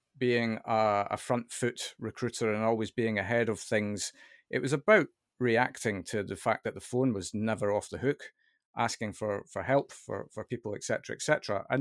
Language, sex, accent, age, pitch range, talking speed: English, male, British, 40-59, 105-125 Hz, 200 wpm